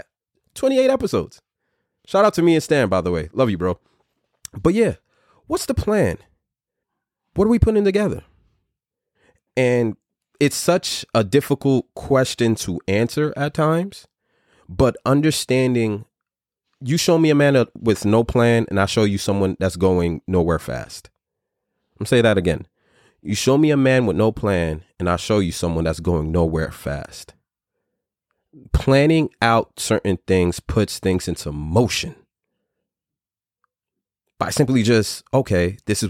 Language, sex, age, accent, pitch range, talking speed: English, male, 30-49, American, 90-140 Hz, 150 wpm